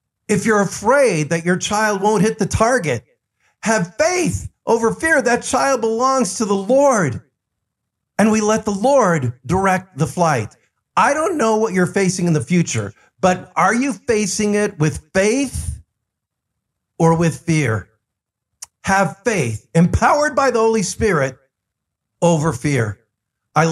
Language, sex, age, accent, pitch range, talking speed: English, male, 50-69, American, 145-220 Hz, 145 wpm